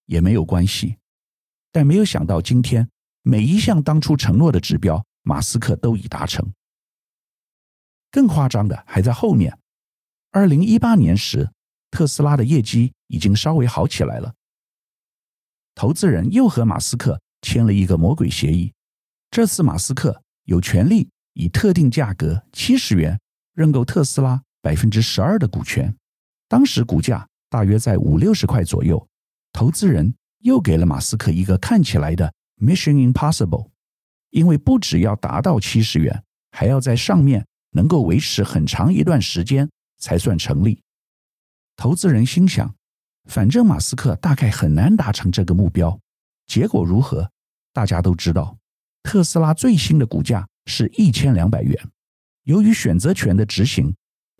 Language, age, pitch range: Chinese, 50-69, 95-155 Hz